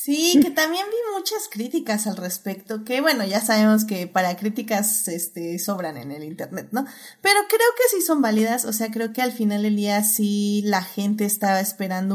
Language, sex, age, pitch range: Spanish, female, 20-39, 195-230 Hz